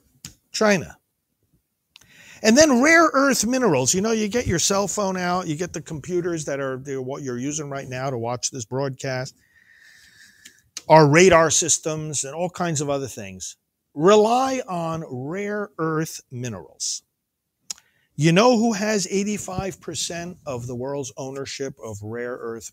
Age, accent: 50-69, American